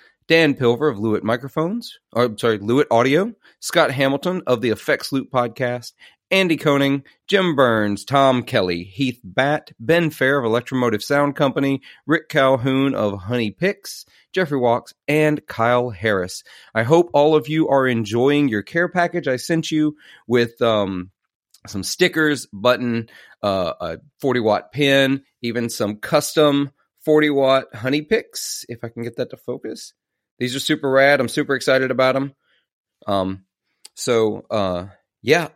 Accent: American